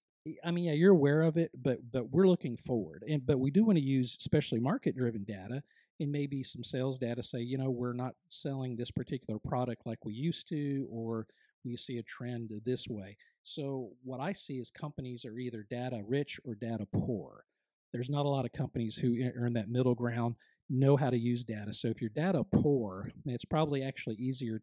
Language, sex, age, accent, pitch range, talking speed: English, male, 50-69, American, 120-145 Hz, 200 wpm